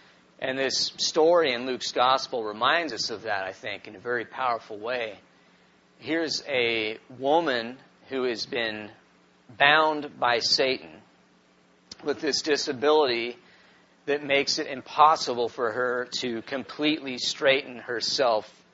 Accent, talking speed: American, 125 wpm